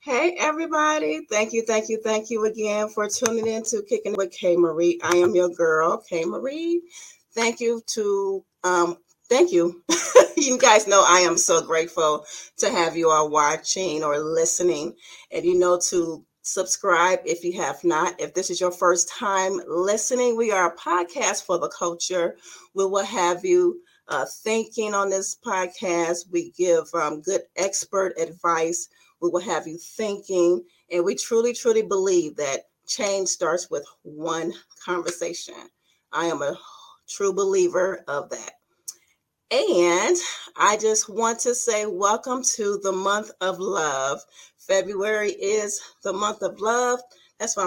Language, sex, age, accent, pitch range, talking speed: English, female, 40-59, American, 175-235 Hz, 155 wpm